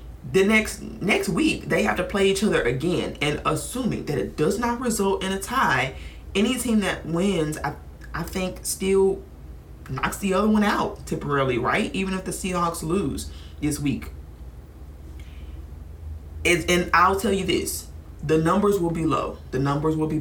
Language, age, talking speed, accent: English, 20-39, 170 wpm, American